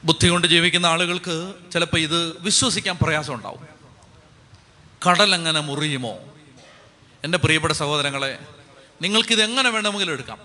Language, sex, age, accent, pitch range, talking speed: Malayalam, male, 30-49, native, 140-190 Hz, 100 wpm